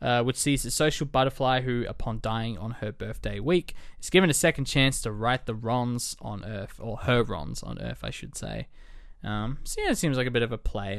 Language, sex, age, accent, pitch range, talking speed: English, male, 20-39, Australian, 115-165 Hz, 235 wpm